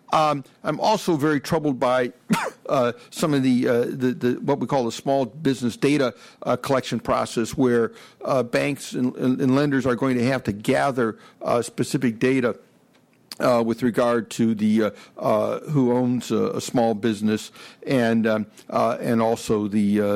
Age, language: 60-79, English